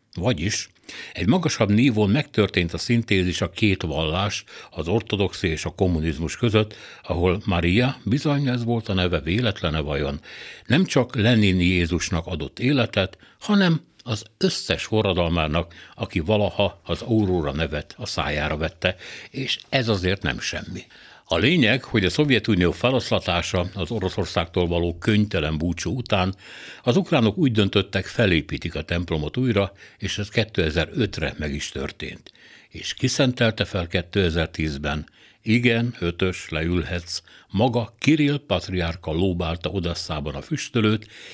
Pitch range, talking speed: 85-115 Hz, 130 wpm